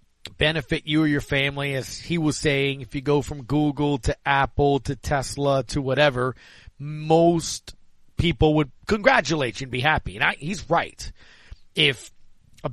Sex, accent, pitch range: male, American, 135-170 Hz